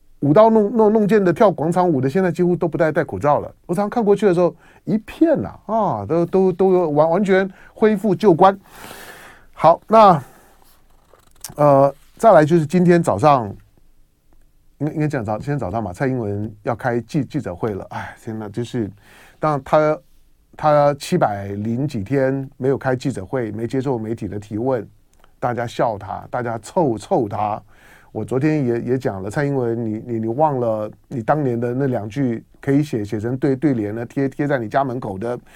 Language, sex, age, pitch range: Chinese, male, 30-49, 125-175 Hz